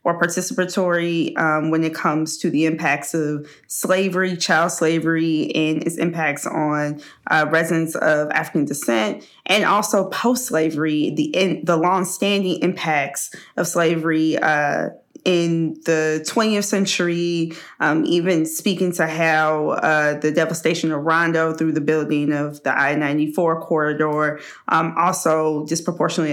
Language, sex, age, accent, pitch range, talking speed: English, female, 20-39, American, 155-180 Hz, 130 wpm